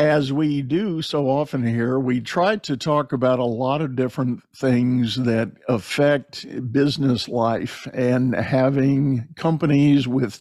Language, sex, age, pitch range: English, male, 50-69, 125-140 Hz